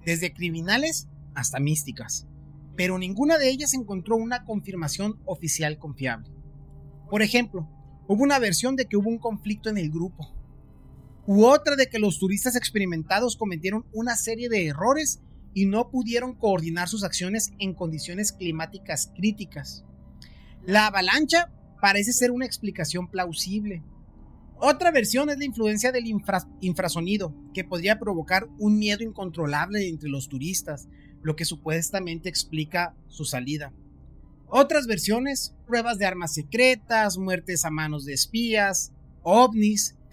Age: 30-49